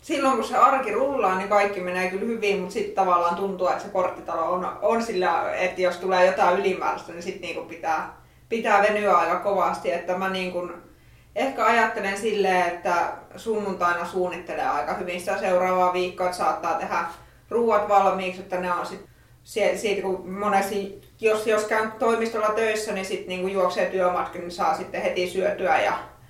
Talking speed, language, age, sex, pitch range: 170 wpm, Finnish, 20-39, female, 180-205 Hz